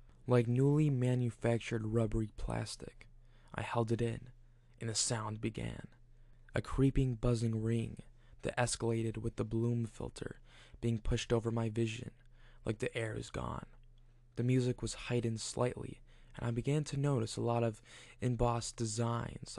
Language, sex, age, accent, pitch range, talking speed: English, male, 20-39, American, 115-125 Hz, 145 wpm